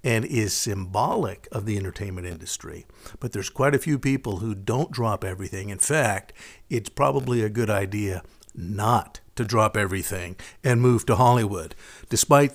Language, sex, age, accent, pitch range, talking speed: English, male, 60-79, American, 105-125 Hz, 160 wpm